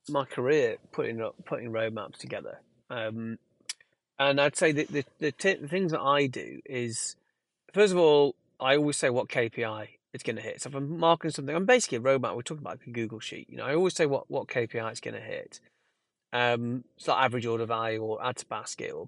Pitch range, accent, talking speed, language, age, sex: 125-180 Hz, British, 215 wpm, English, 30-49, male